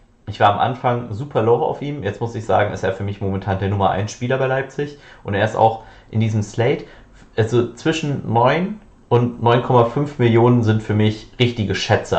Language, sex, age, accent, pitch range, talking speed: German, male, 30-49, German, 100-125 Hz, 200 wpm